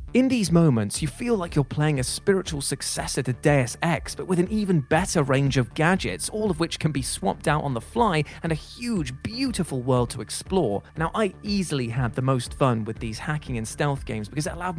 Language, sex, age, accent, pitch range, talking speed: English, male, 20-39, British, 130-175 Hz, 225 wpm